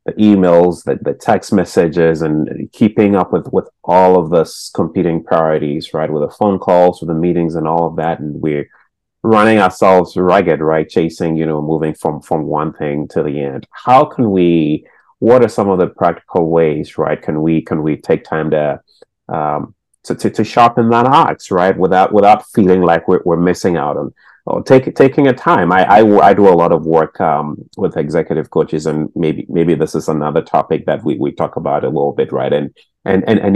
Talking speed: 210 wpm